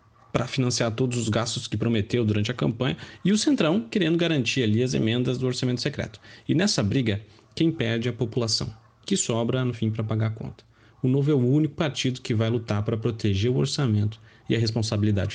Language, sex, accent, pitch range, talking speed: Portuguese, male, Brazilian, 115-150 Hz, 205 wpm